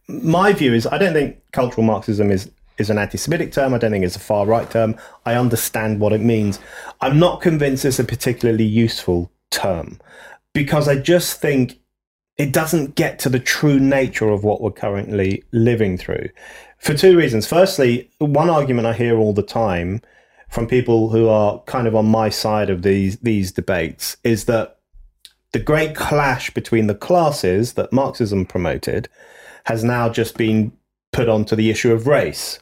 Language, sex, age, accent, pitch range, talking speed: English, male, 30-49, British, 110-140 Hz, 175 wpm